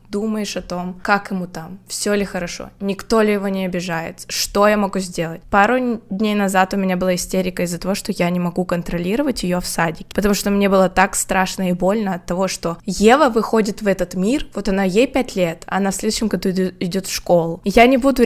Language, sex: Ukrainian, female